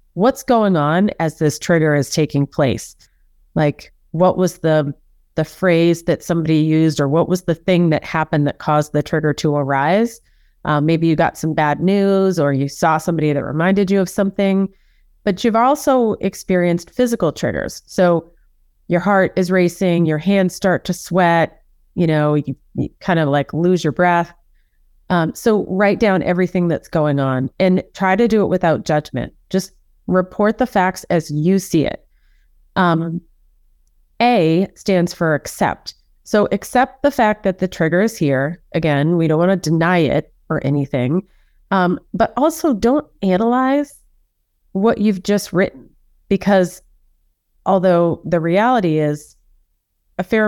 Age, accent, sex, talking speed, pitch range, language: 30-49, American, female, 160 wpm, 155-195 Hz, English